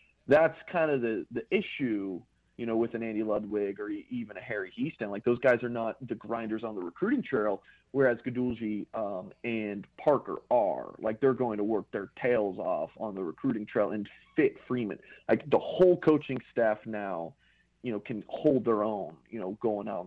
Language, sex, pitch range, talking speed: English, male, 105-140 Hz, 195 wpm